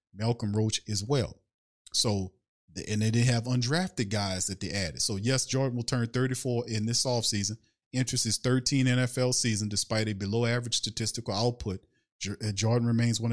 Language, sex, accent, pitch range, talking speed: English, male, American, 110-135 Hz, 170 wpm